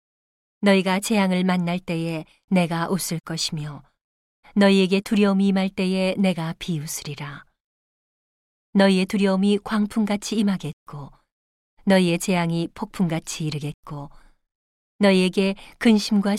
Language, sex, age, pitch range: Korean, female, 40-59, 170-205 Hz